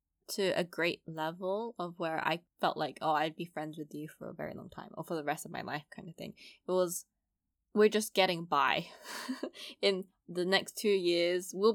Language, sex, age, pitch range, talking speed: English, female, 10-29, 160-205 Hz, 215 wpm